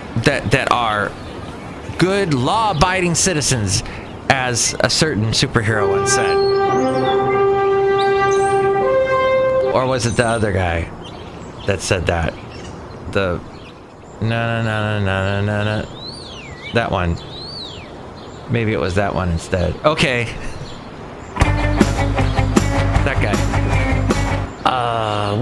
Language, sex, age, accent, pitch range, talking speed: English, male, 30-49, American, 105-180 Hz, 100 wpm